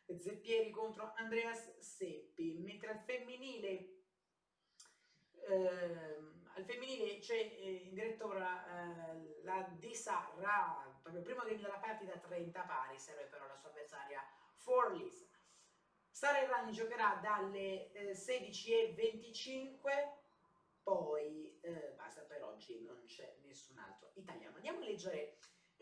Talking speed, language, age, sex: 125 wpm, Italian, 30-49, female